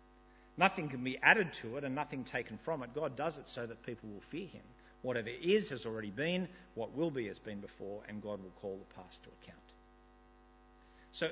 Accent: Australian